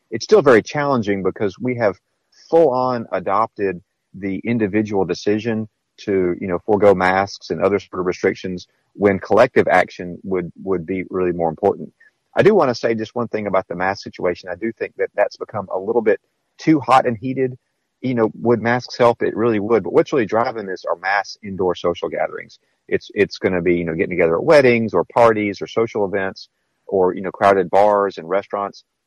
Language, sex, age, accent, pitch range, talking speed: English, male, 40-59, American, 100-130 Hz, 200 wpm